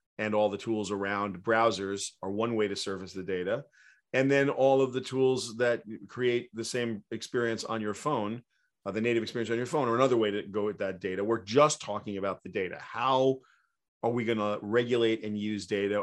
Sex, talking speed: male, 215 wpm